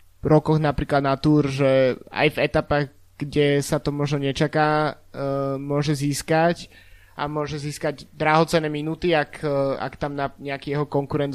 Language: Slovak